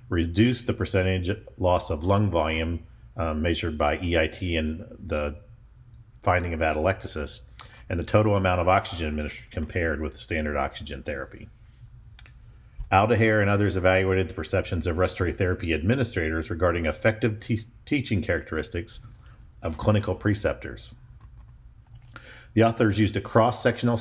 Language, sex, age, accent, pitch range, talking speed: English, male, 50-69, American, 85-110 Hz, 125 wpm